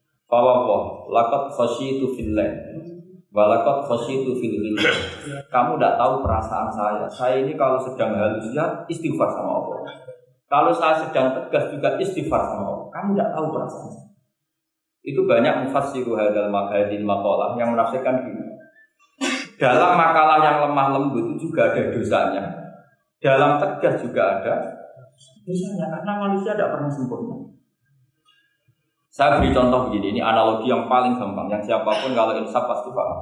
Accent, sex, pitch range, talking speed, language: Indonesian, male, 115-170 Hz, 140 wpm, English